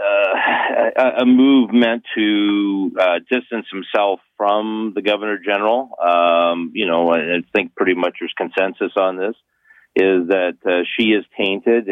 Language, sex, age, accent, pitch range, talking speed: English, male, 50-69, American, 90-110 Hz, 145 wpm